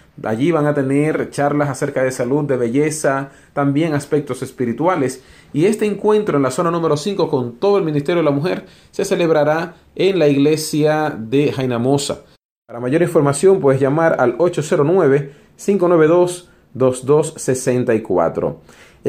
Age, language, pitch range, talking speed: 40-59, English, 140-180 Hz, 130 wpm